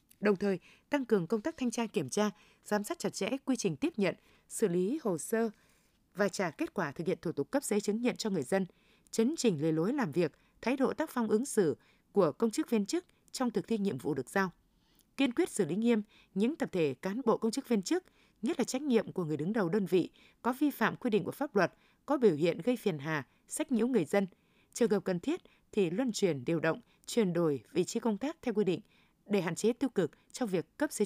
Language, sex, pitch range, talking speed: Vietnamese, female, 185-240 Hz, 250 wpm